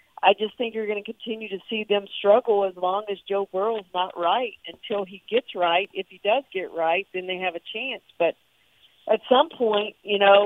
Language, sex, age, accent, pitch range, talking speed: English, female, 50-69, American, 185-220 Hz, 220 wpm